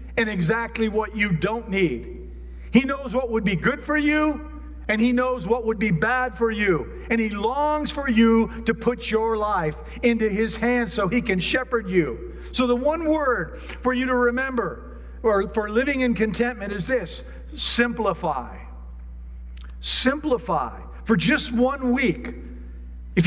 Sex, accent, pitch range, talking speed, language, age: male, American, 155-235 Hz, 160 wpm, English, 50-69